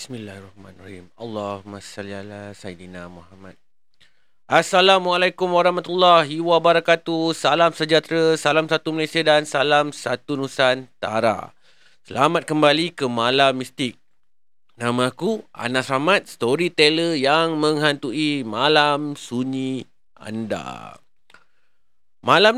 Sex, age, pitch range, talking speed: male, 30-49, 125-170 Hz, 85 wpm